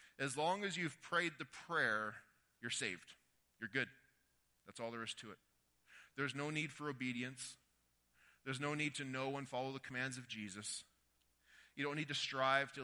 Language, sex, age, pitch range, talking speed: English, male, 30-49, 100-130 Hz, 180 wpm